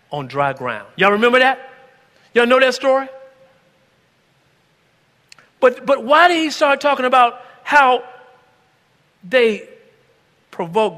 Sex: male